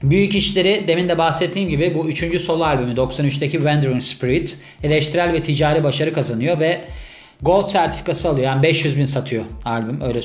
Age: 40-59